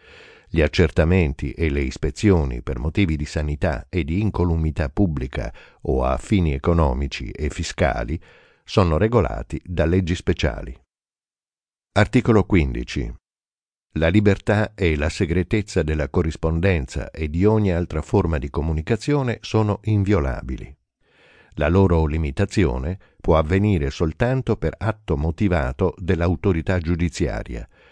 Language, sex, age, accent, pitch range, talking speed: Italian, male, 60-79, native, 75-100 Hz, 115 wpm